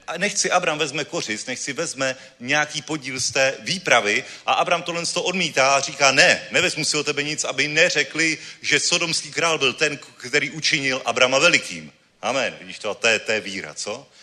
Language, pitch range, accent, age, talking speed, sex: Czech, 150-185 Hz, native, 30-49, 185 wpm, male